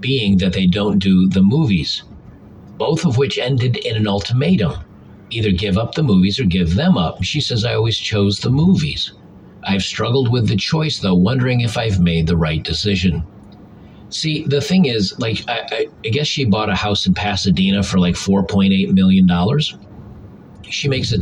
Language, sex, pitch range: English, male, 95-115 Hz